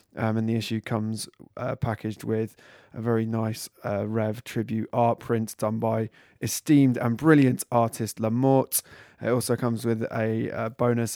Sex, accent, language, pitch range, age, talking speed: male, British, English, 110-125 Hz, 20-39, 160 wpm